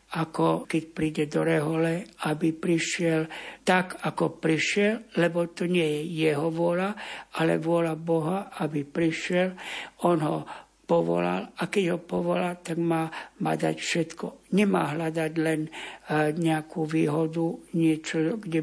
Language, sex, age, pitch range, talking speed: Slovak, male, 60-79, 160-180 Hz, 130 wpm